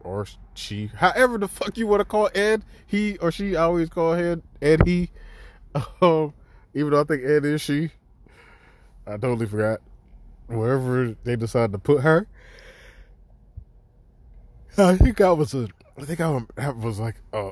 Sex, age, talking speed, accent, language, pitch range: male, 20-39, 160 wpm, American, English, 95-145 Hz